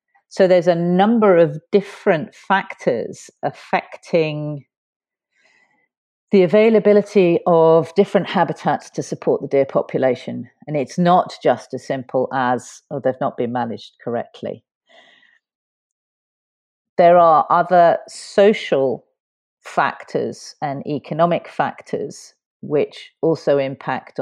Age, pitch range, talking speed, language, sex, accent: 40-59, 135-175 Hz, 105 wpm, English, female, British